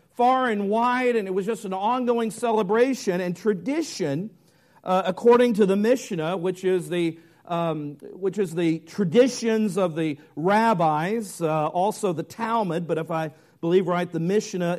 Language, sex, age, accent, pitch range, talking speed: English, male, 50-69, American, 150-225 Hz, 160 wpm